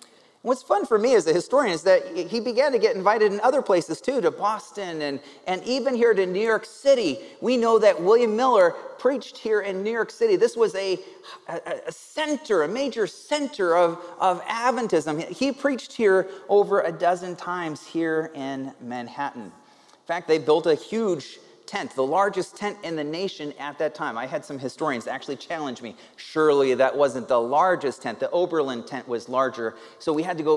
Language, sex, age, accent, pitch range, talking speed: English, male, 30-49, American, 140-215 Hz, 195 wpm